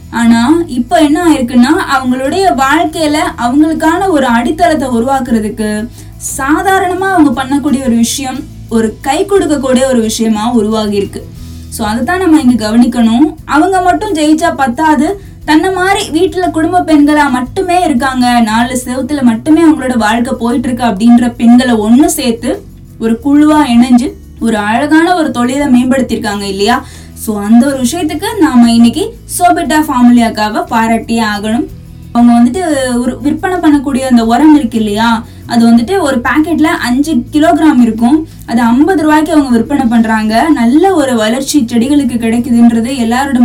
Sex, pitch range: female, 235-310 Hz